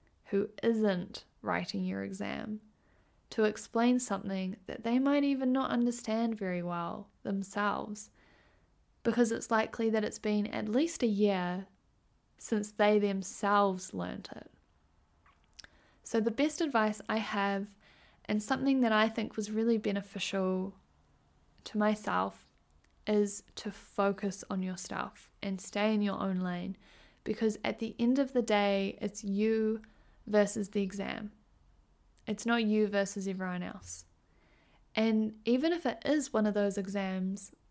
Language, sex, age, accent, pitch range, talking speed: English, female, 10-29, Australian, 195-225 Hz, 140 wpm